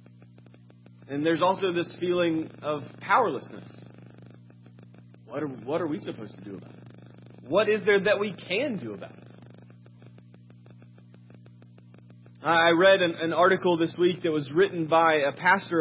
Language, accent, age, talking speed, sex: English, American, 30-49, 150 wpm, male